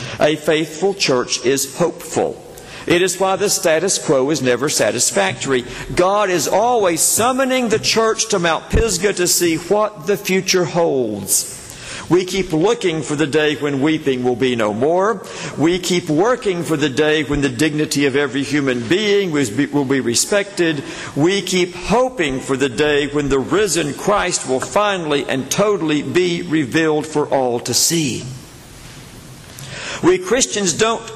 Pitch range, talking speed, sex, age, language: 130-175 Hz, 155 wpm, male, 50-69, English